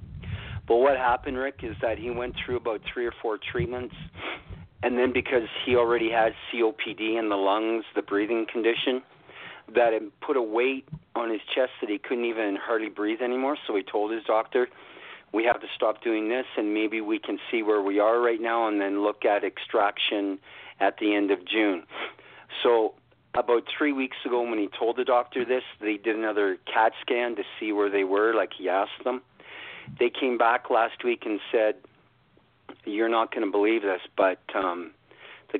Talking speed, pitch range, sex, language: 190 wpm, 105-125 Hz, male, English